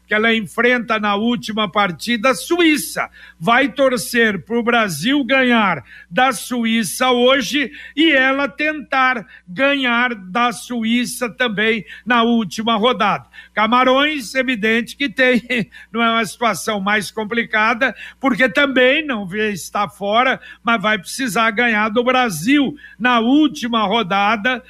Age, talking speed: 60-79, 125 wpm